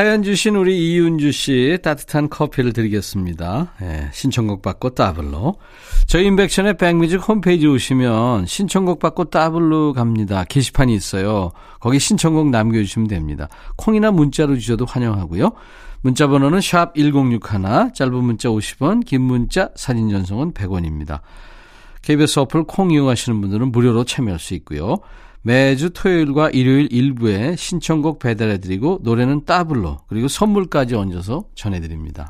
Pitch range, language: 110-165 Hz, Korean